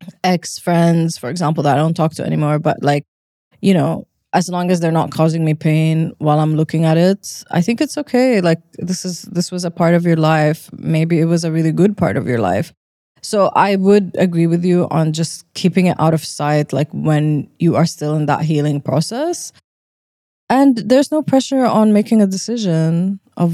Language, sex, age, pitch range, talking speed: English, female, 20-39, 155-180 Hz, 210 wpm